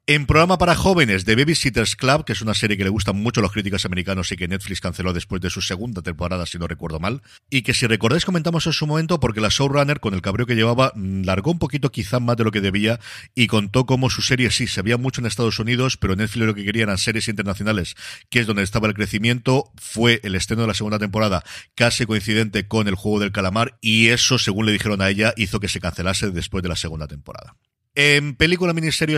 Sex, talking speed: male, 235 wpm